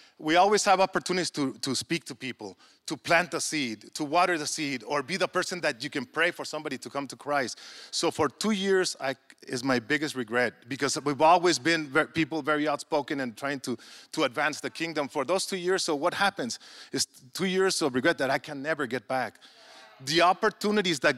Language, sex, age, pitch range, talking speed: English, male, 30-49, 140-180 Hz, 210 wpm